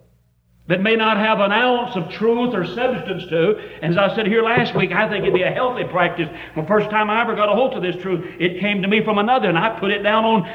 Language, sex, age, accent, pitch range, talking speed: English, male, 60-79, American, 175-235 Hz, 275 wpm